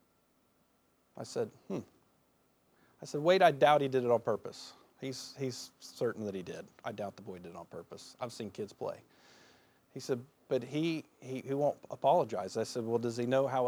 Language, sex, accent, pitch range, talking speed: English, male, American, 130-175 Hz, 200 wpm